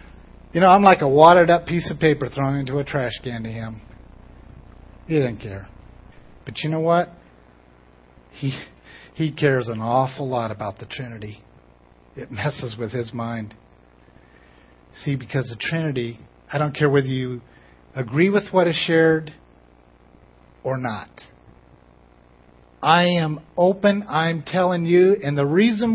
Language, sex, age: English, male, 50-69